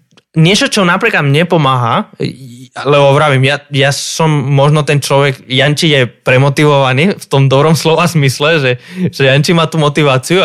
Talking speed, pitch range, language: 155 wpm, 125-160 Hz, Slovak